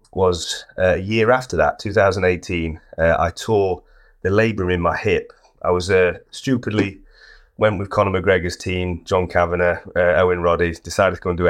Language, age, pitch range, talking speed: English, 30-49, 85-105 Hz, 185 wpm